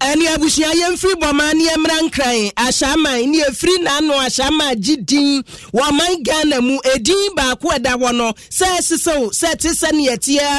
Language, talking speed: English, 165 wpm